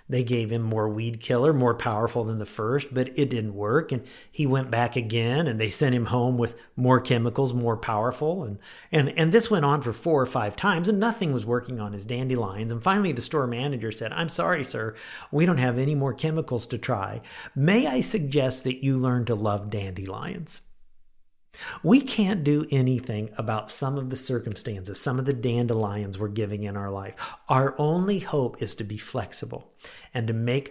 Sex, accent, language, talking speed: male, American, English, 200 wpm